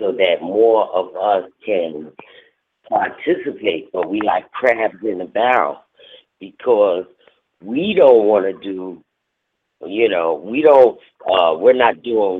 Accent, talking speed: American, 135 wpm